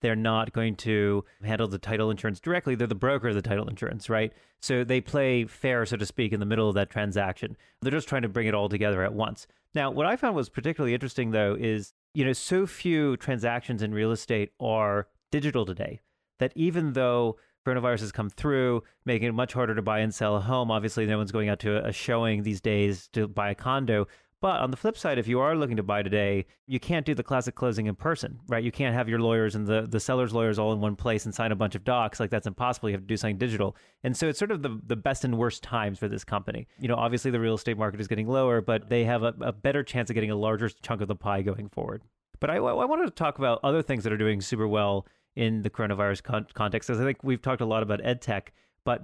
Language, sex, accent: English, male, American